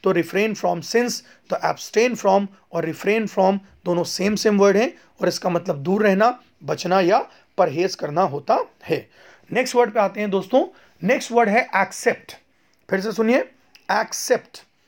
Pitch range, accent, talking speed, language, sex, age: 190-235 Hz, native, 160 wpm, Hindi, male, 30-49